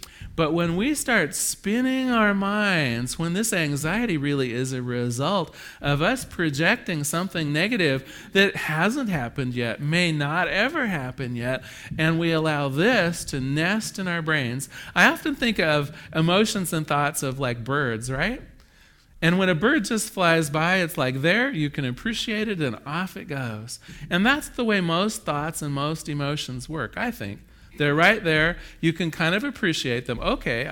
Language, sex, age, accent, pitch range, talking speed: English, male, 40-59, American, 130-185 Hz, 170 wpm